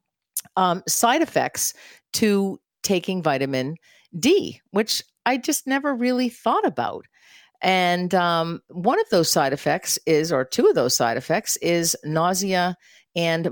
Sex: female